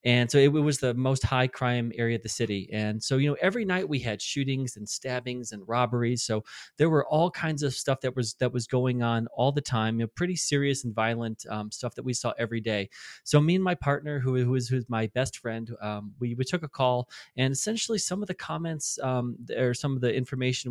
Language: English